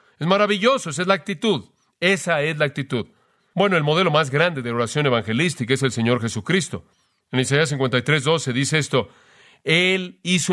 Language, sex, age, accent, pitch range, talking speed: Spanish, male, 40-59, Mexican, 135-185 Hz, 170 wpm